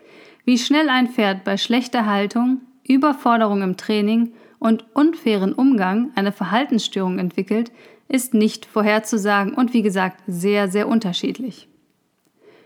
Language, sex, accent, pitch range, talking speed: German, female, German, 210-255 Hz, 120 wpm